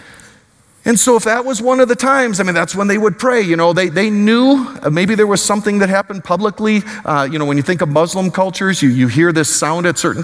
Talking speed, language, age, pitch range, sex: 260 wpm, English, 40-59, 145-205 Hz, male